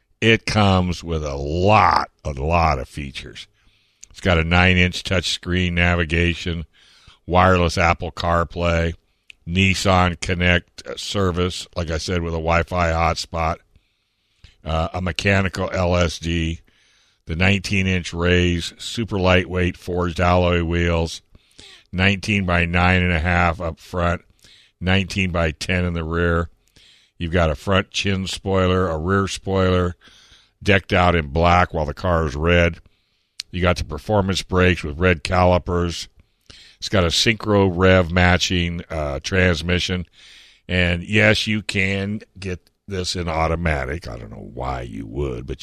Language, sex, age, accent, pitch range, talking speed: English, male, 60-79, American, 85-95 Hz, 140 wpm